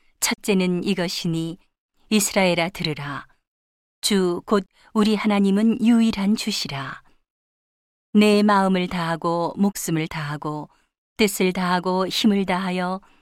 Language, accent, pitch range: Korean, native, 170-210 Hz